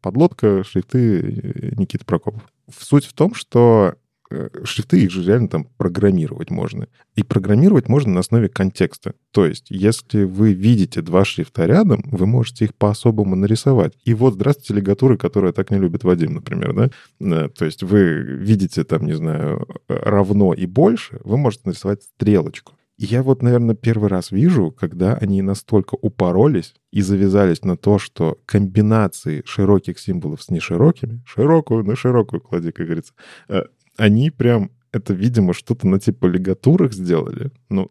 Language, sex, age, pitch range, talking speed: Russian, male, 20-39, 95-125 Hz, 150 wpm